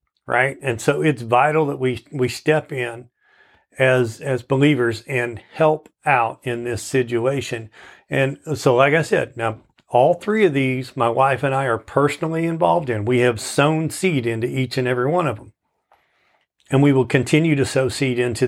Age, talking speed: 40-59, 180 wpm